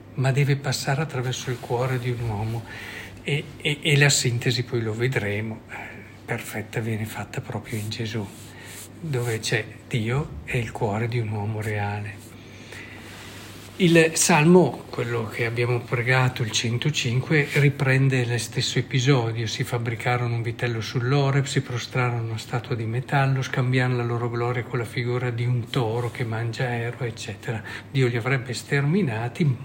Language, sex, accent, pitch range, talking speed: Italian, male, native, 115-140 Hz, 150 wpm